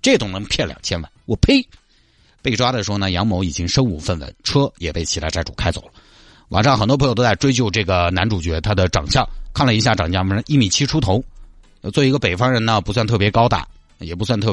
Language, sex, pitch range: Chinese, male, 90-135 Hz